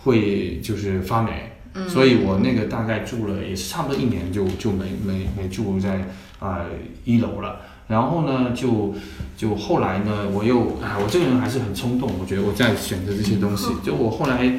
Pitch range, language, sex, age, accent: 95-120 Hz, Chinese, male, 20-39, native